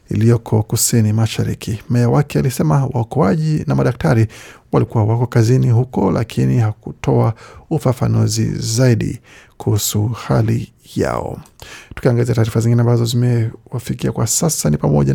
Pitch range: 115-135 Hz